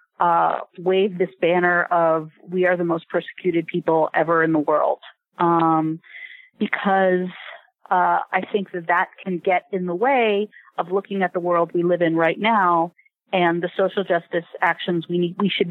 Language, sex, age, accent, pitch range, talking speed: English, female, 30-49, American, 165-190 Hz, 175 wpm